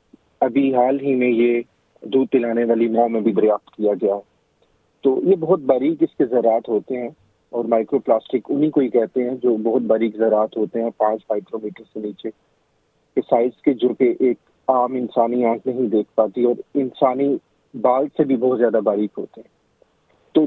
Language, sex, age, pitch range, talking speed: Urdu, male, 40-59, 110-140 Hz, 185 wpm